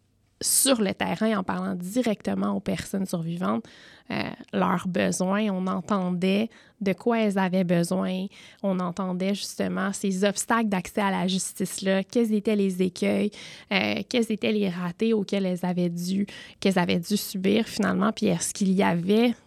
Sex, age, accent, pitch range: female, 20-39, Canadian, 185-210 Hz